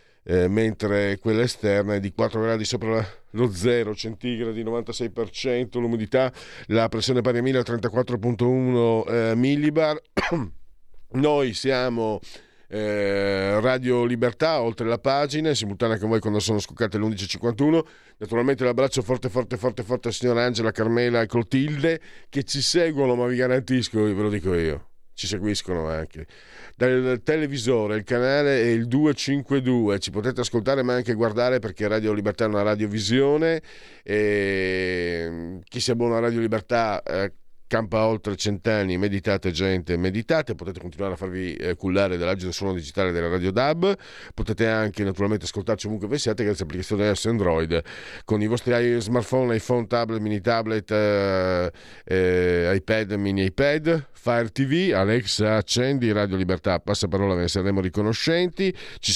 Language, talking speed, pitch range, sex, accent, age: Italian, 145 wpm, 100-125 Hz, male, native, 40-59